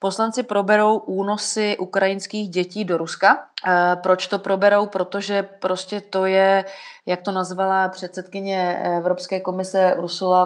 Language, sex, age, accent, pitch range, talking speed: Czech, female, 30-49, native, 175-195 Hz, 120 wpm